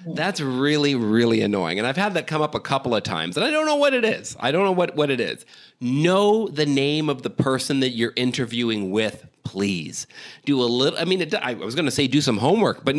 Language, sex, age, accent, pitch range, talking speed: English, male, 40-59, American, 115-170 Hz, 250 wpm